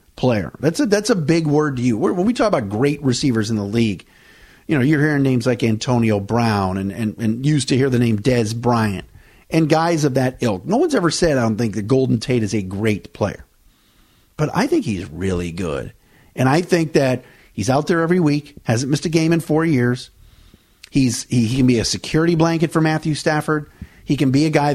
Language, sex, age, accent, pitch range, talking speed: English, male, 50-69, American, 115-180 Hz, 225 wpm